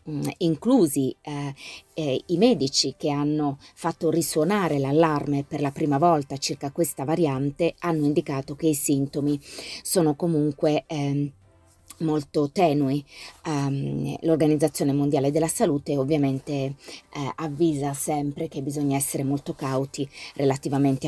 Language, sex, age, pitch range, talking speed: Italian, female, 30-49, 140-165 Hz, 120 wpm